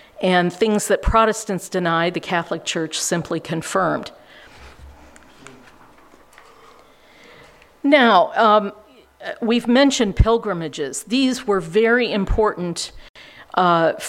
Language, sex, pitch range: English, female, 180-230 Hz